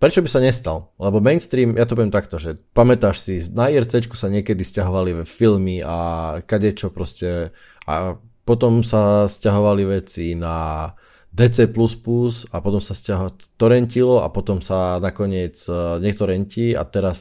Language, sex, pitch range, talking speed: Slovak, male, 95-115 Hz, 145 wpm